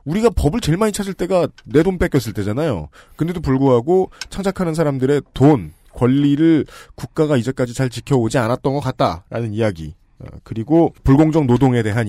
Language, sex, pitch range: Korean, male, 115-155 Hz